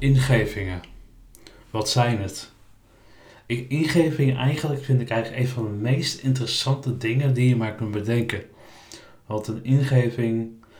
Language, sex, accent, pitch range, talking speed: Dutch, male, Dutch, 105-125 Hz, 130 wpm